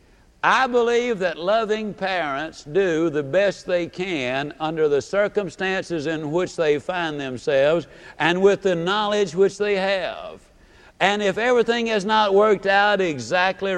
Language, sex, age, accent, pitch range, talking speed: English, male, 60-79, American, 160-210 Hz, 145 wpm